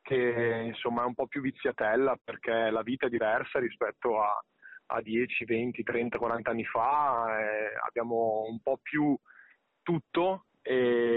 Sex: male